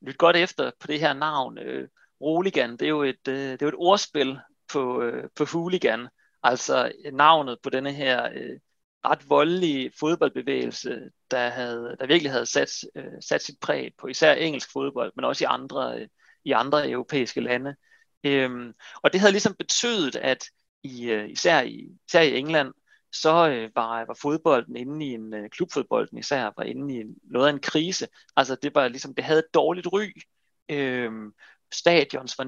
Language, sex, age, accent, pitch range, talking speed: Danish, male, 30-49, native, 130-160 Hz, 165 wpm